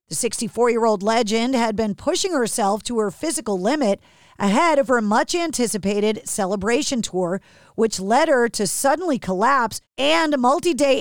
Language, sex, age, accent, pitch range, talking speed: English, female, 40-59, American, 215-270 Hz, 140 wpm